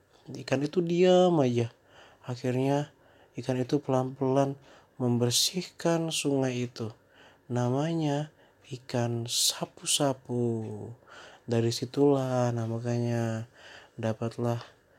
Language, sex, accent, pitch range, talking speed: Indonesian, male, native, 120-150 Hz, 70 wpm